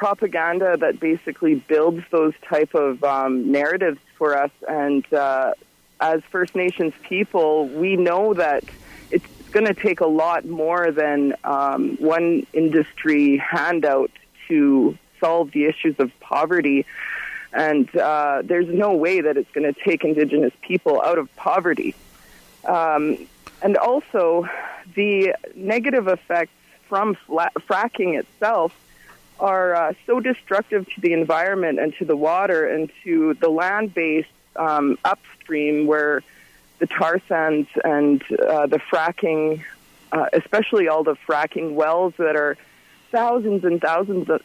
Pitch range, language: 150-190 Hz, English